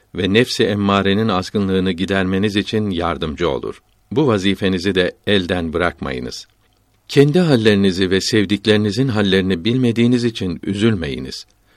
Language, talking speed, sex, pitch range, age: Turkish, 105 wpm, male, 95-115 Hz, 60-79